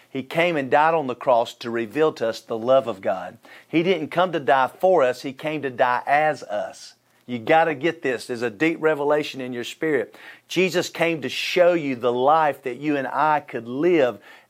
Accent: American